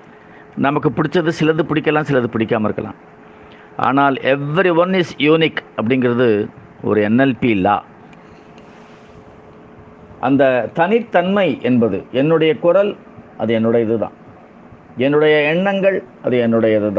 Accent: native